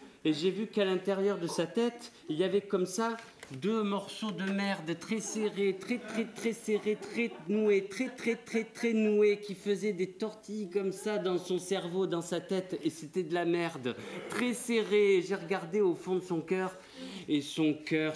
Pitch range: 155-195 Hz